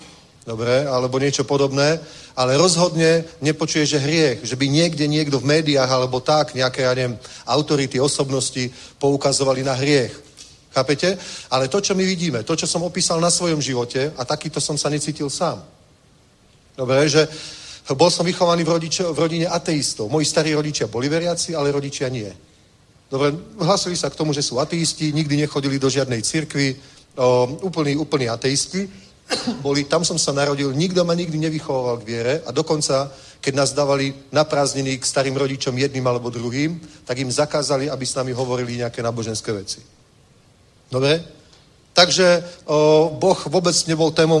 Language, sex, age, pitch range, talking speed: Czech, male, 40-59, 130-160 Hz, 160 wpm